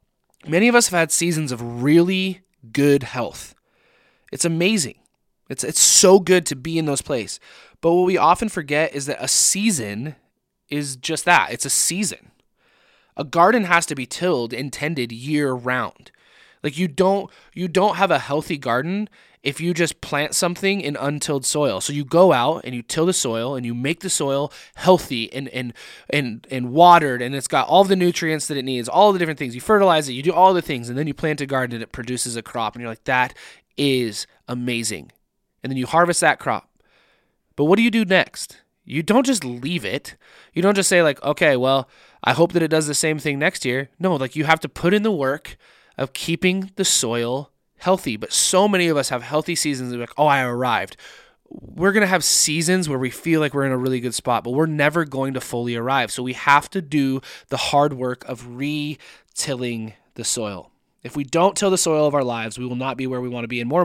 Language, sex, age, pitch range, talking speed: English, male, 20-39, 130-175 Hz, 220 wpm